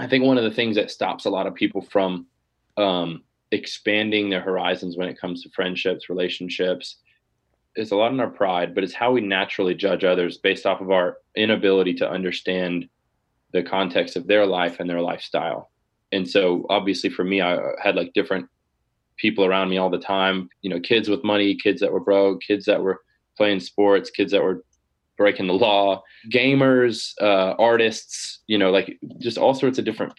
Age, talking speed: 20-39, 195 wpm